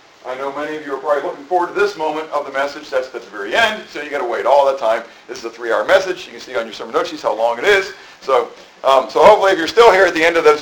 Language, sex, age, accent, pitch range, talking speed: English, male, 50-69, American, 140-175 Hz, 320 wpm